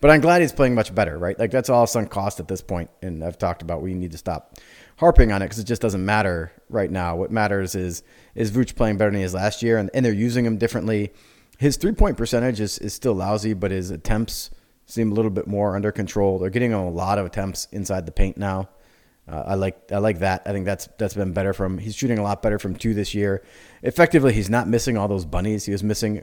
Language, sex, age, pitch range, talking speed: English, male, 30-49, 95-115 Hz, 255 wpm